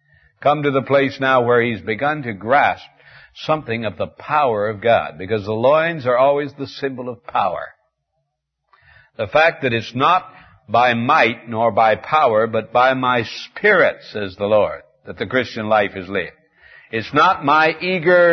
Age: 60-79